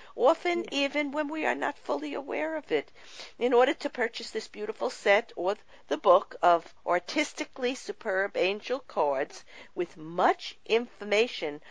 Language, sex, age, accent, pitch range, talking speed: English, female, 50-69, American, 180-235 Hz, 145 wpm